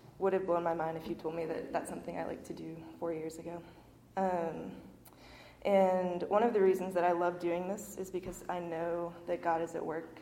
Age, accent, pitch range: 20-39, American, 170-190 Hz